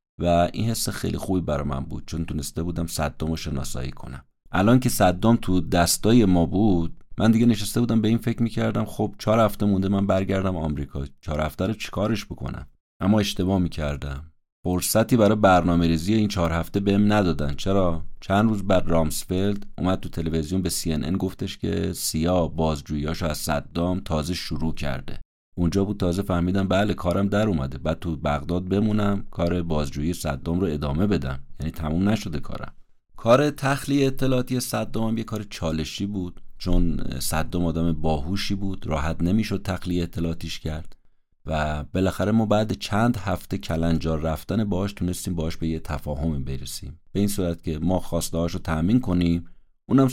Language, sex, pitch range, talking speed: Persian, male, 80-100 Hz, 165 wpm